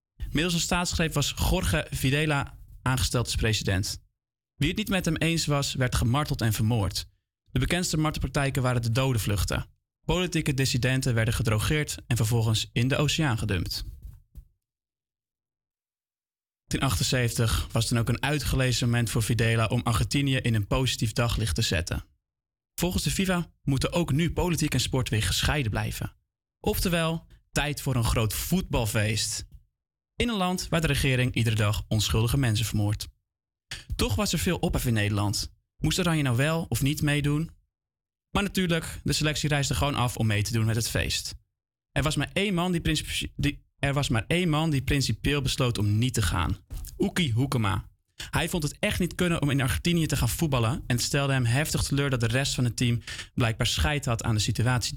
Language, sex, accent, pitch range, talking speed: Dutch, male, Dutch, 110-145 Hz, 180 wpm